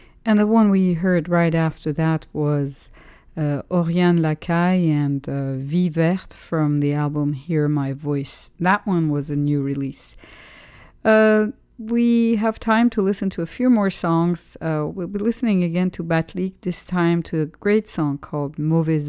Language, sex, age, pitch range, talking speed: English, female, 50-69, 150-180 Hz, 170 wpm